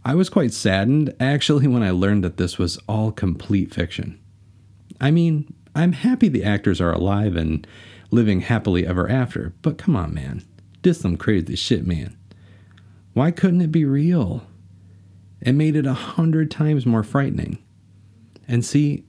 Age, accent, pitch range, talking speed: 40-59, American, 95-130 Hz, 160 wpm